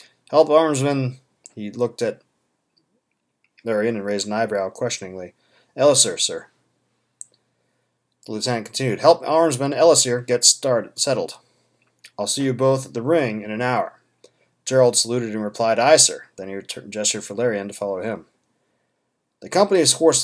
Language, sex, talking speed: English, male, 145 wpm